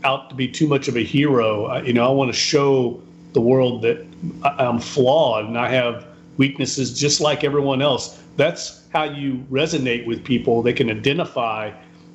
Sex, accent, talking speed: male, American, 180 wpm